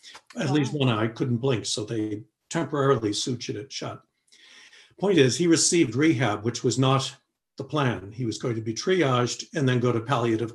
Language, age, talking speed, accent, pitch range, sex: English, 60-79, 190 wpm, American, 120-145 Hz, male